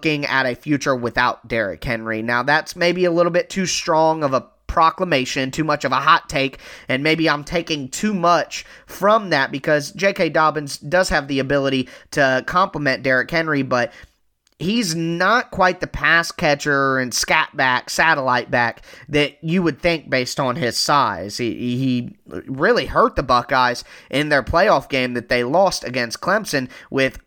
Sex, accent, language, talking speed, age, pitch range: male, American, English, 170 wpm, 20-39, 130-165 Hz